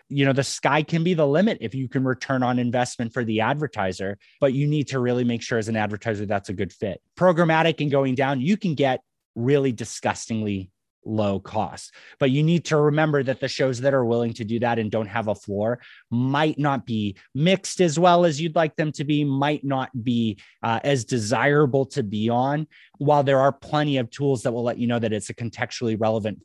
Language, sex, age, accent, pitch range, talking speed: English, male, 30-49, American, 115-145 Hz, 220 wpm